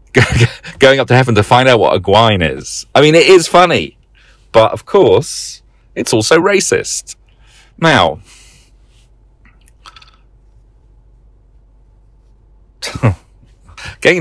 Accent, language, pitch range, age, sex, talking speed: British, English, 85-120 Hz, 40-59, male, 100 wpm